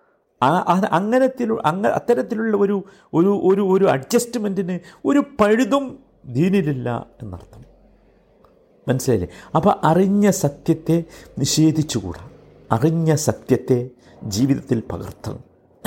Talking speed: 75 wpm